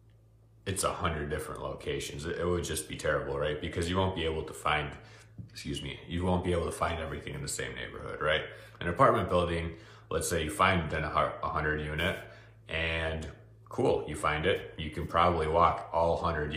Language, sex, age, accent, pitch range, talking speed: English, male, 30-49, American, 75-100 Hz, 190 wpm